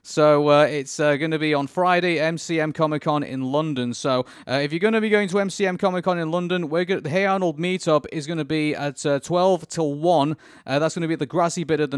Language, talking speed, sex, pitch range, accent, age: English, 270 wpm, male, 135-175 Hz, British, 30-49